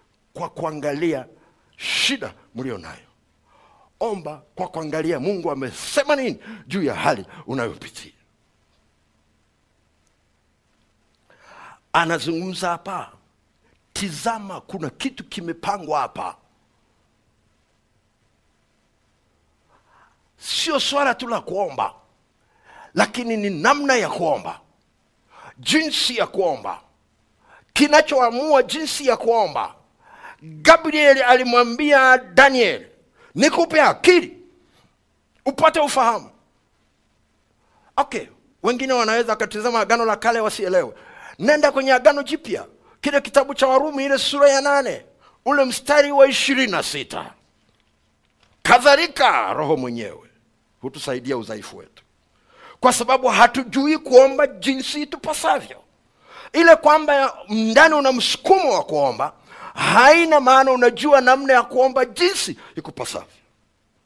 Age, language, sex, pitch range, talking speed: 60-79, Swahili, male, 185-285 Hz, 90 wpm